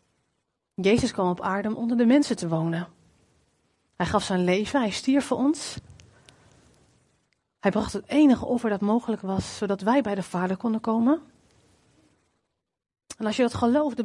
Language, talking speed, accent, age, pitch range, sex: Dutch, 160 wpm, Dutch, 30-49, 190-245 Hz, female